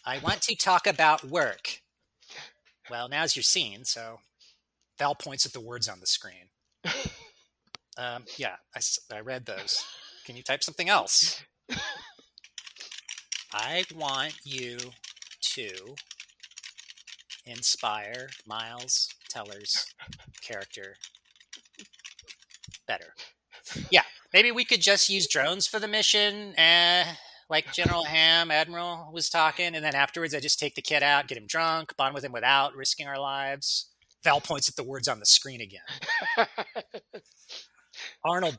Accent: American